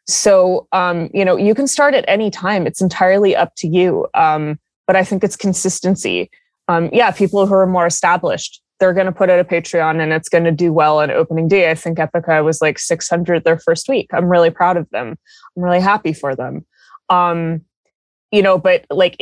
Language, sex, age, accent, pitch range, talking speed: English, female, 20-39, American, 160-190 Hz, 210 wpm